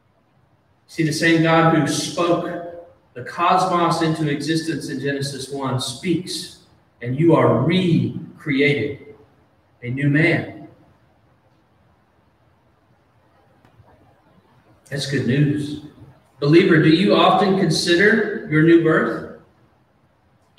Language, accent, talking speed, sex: English, American, 95 wpm, male